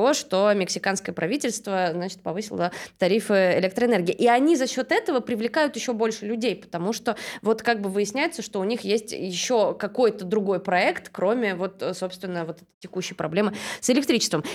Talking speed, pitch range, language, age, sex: 155 wpm, 175-235 Hz, Russian, 20-39, female